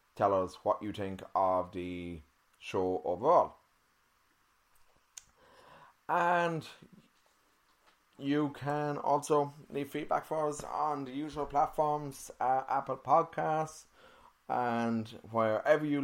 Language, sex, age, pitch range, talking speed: English, male, 20-39, 110-150 Hz, 100 wpm